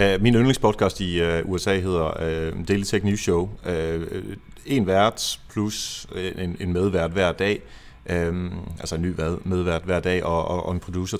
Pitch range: 90-115 Hz